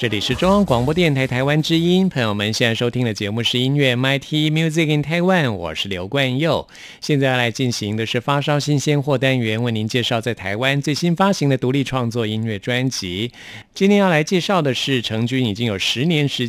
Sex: male